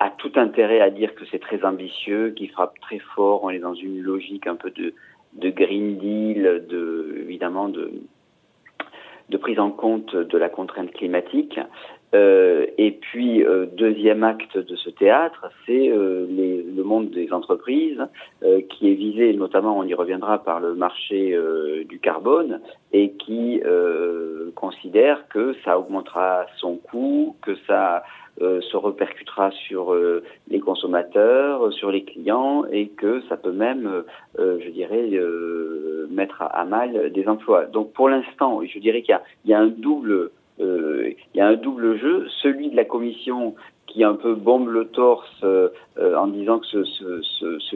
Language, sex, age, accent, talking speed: French, male, 40-59, French, 165 wpm